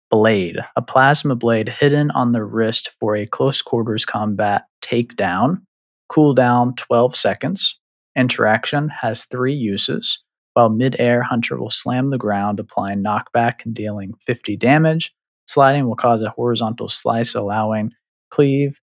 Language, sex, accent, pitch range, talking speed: English, male, American, 115-140 Hz, 135 wpm